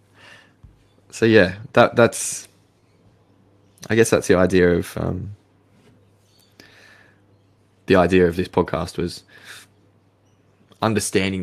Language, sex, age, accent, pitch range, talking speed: English, male, 20-39, Australian, 90-105 Hz, 95 wpm